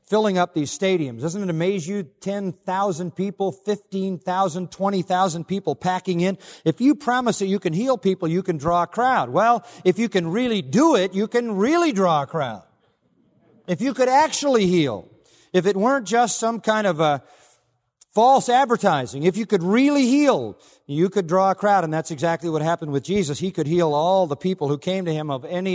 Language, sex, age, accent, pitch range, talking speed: English, male, 50-69, American, 150-195 Hz, 200 wpm